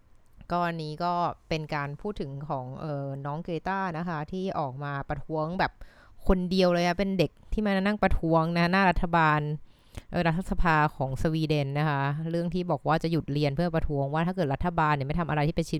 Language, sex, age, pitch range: Thai, female, 20-39, 140-175 Hz